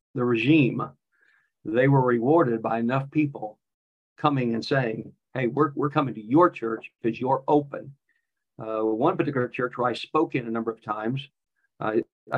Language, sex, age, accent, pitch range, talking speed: English, male, 50-69, American, 125-160 Hz, 165 wpm